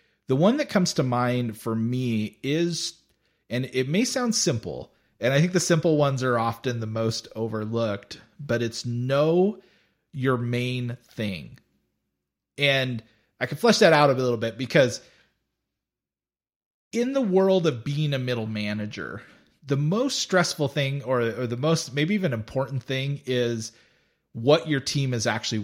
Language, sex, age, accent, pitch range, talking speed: English, male, 30-49, American, 115-160 Hz, 155 wpm